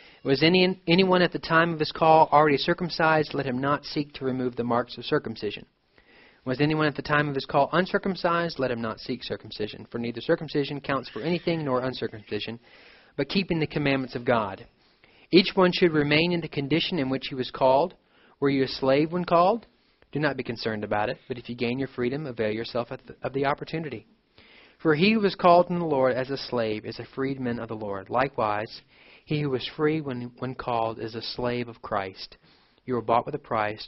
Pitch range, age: 120-150 Hz, 40-59